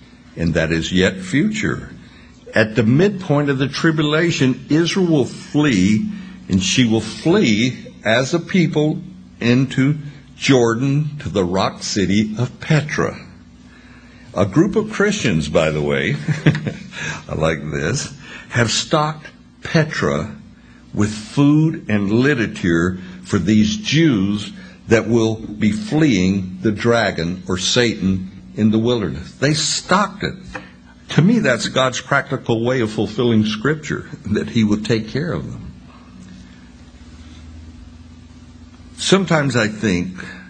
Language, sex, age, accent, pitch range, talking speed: English, male, 60-79, American, 90-140 Hz, 120 wpm